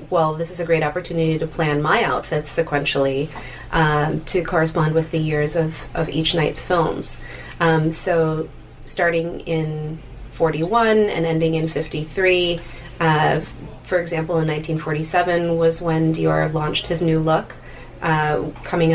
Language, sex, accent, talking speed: English, female, American, 140 wpm